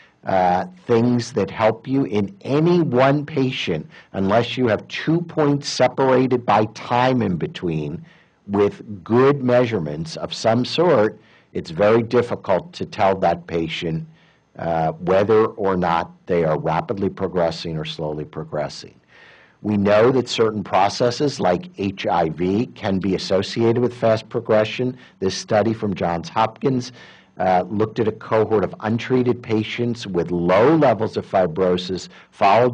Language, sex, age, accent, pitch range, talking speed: English, male, 50-69, American, 95-125 Hz, 135 wpm